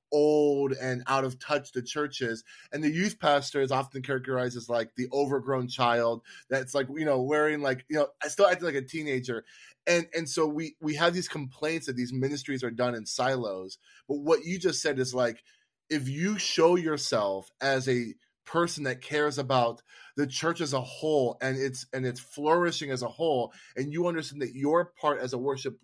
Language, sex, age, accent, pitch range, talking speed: English, male, 20-39, American, 130-160 Hz, 200 wpm